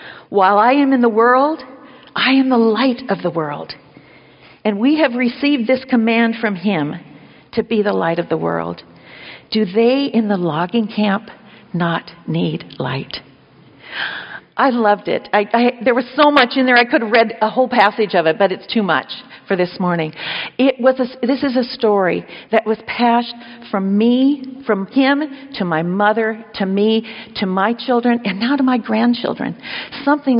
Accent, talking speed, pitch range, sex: American, 180 wpm, 195-255 Hz, female